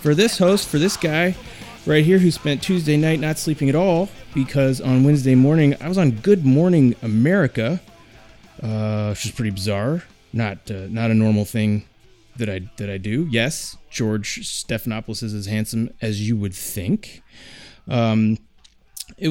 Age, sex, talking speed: 30-49, male, 170 wpm